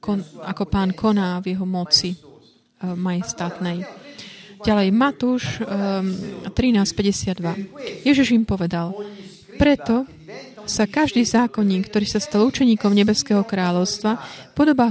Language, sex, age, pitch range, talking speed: Slovak, female, 30-49, 190-235 Hz, 100 wpm